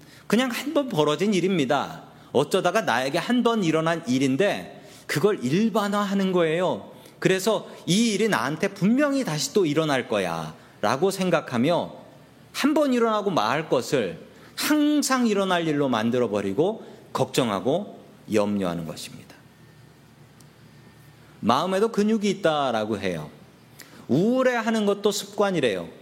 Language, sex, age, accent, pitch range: Korean, male, 40-59, native, 145-225 Hz